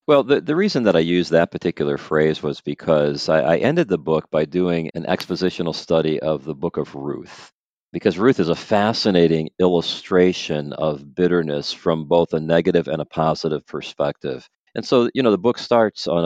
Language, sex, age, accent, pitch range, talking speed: English, male, 40-59, American, 80-90 Hz, 190 wpm